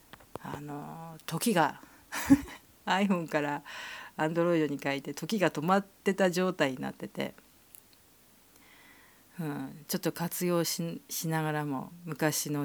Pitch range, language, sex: 150-195 Hz, Japanese, female